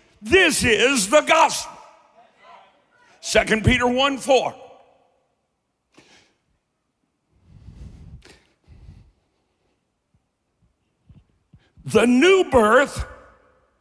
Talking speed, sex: 50 wpm, male